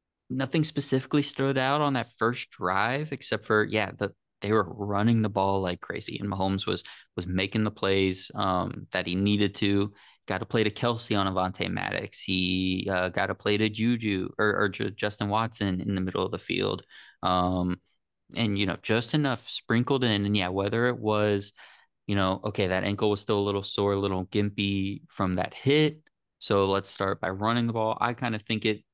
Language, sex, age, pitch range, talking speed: English, male, 20-39, 95-110 Hz, 200 wpm